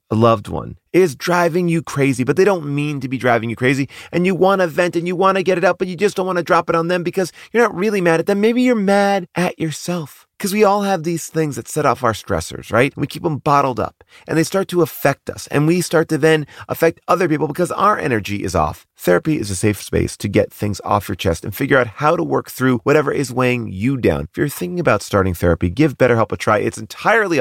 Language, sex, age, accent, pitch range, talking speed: English, male, 30-49, American, 110-175 Hz, 265 wpm